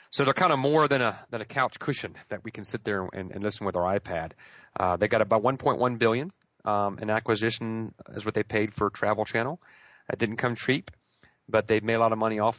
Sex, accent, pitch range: male, American, 95-120 Hz